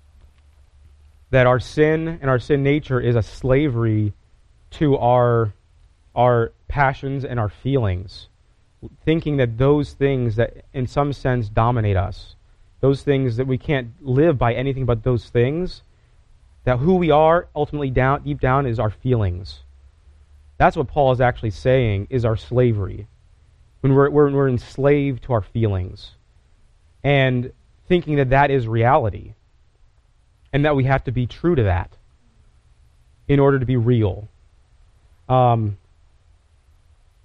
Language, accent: English, American